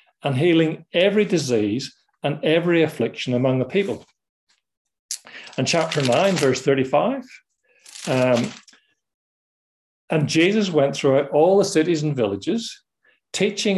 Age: 50-69